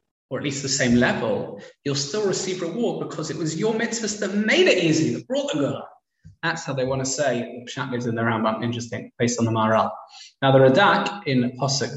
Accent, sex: British, male